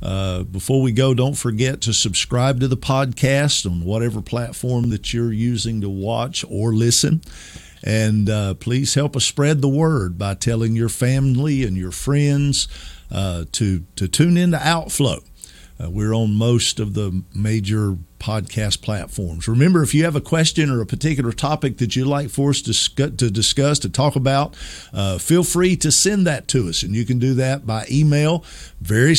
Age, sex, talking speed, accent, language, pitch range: 50-69, male, 185 wpm, American, English, 110-140 Hz